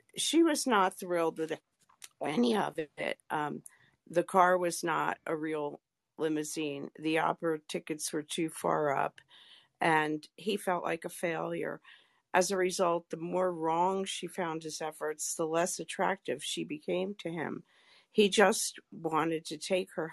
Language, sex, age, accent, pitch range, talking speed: English, female, 50-69, American, 160-185 Hz, 155 wpm